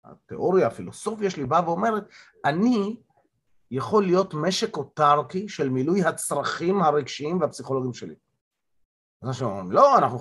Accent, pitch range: native, 135-205 Hz